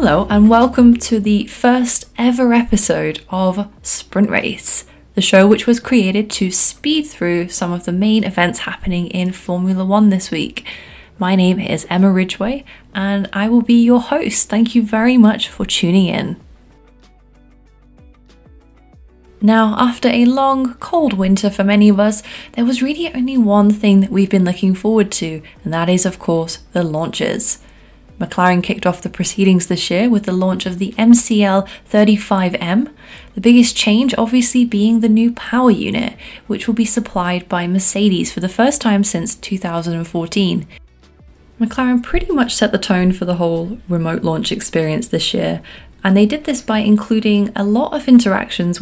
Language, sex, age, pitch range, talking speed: English, female, 20-39, 180-235 Hz, 165 wpm